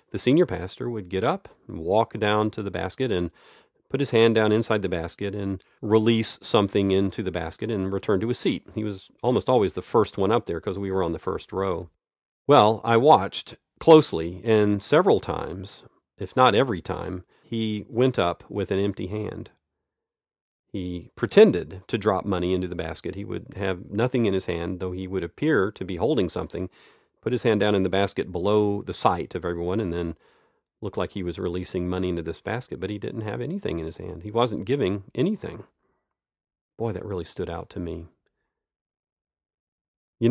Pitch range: 90-110 Hz